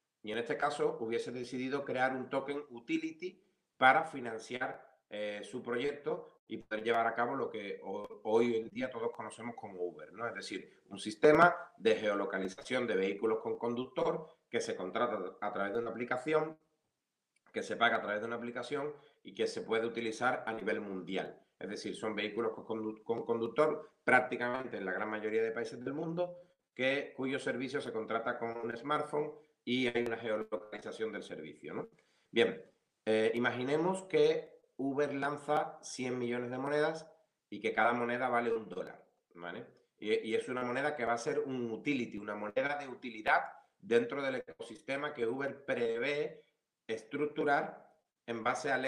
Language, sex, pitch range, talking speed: Spanish, male, 115-155 Hz, 170 wpm